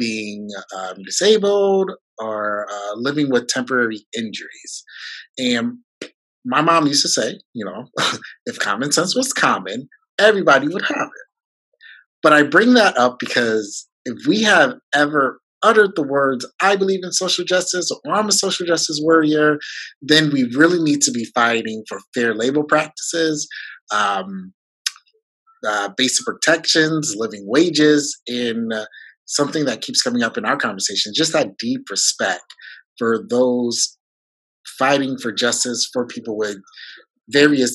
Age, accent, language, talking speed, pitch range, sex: 30-49, American, English, 145 wpm, 115-180 Hz, male